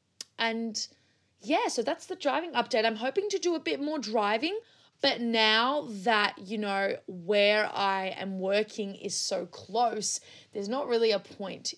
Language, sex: English, female